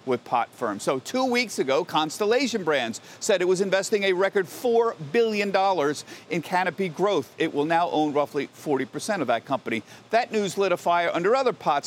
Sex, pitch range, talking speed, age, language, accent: male, 155-215 Hz, 185 wpm, 50-69, English, American